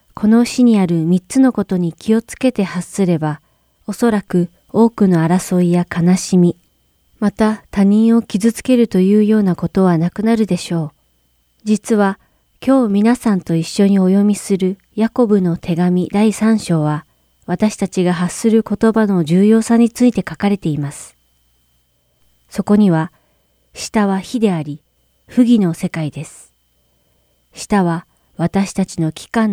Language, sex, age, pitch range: Japanese, female, 40-59, 160-205 Hz